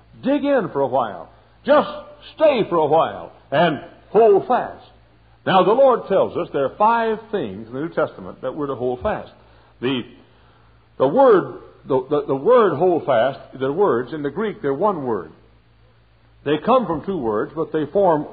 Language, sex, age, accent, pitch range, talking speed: English, male, 60-79, American, 135-215 Hz, 185 wpm